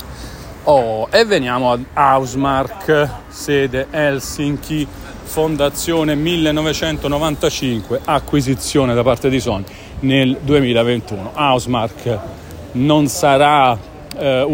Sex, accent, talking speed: male, native, 85 wpm